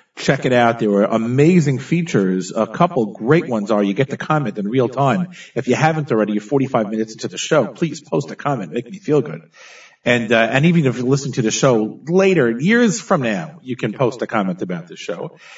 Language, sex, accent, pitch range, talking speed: English, male, American, 115-165 Hz, 225 wpm